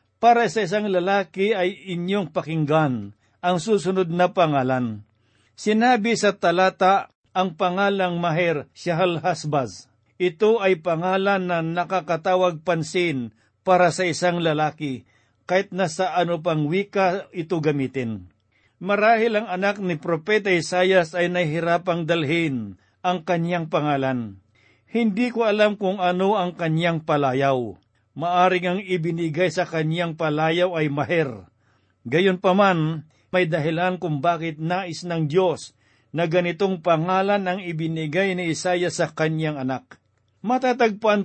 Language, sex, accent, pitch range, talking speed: Filipino, male, native, 155-185 Hz, 125 wpm